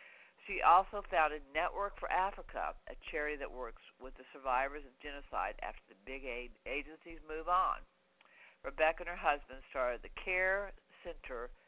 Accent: American